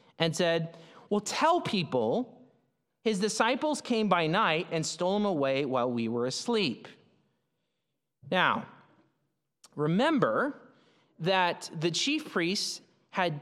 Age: 30-49